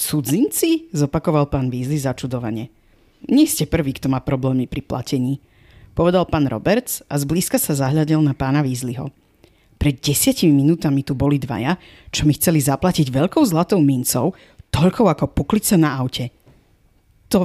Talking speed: 145 wpm